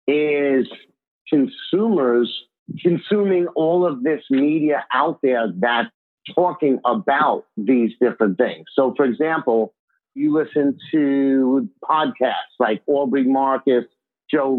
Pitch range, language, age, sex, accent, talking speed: 130-165 Hz, English, 50-69, male, American, 105 wpm